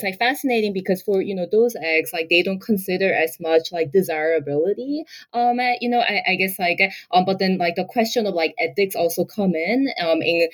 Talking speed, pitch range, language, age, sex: 215 wpm, 175-225 Hz, English, 20-39, female